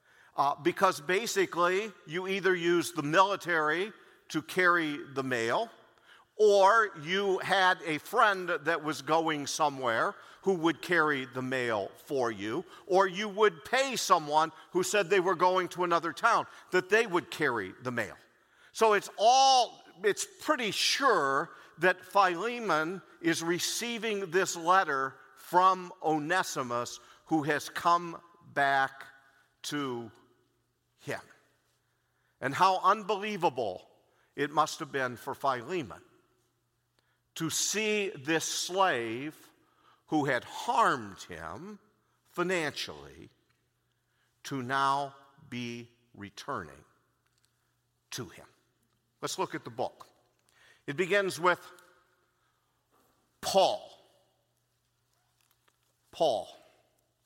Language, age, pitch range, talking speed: English, 50-69, 140-195 Hz, 105 wpm